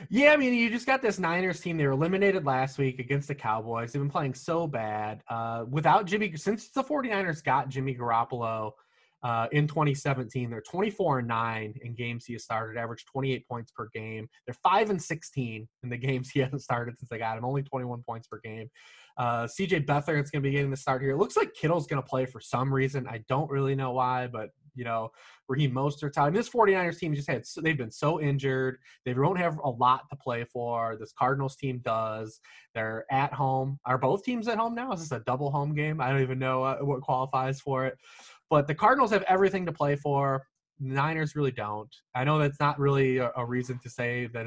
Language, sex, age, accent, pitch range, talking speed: English, male, 20-39, American, 125-155 Hz, 225 wpm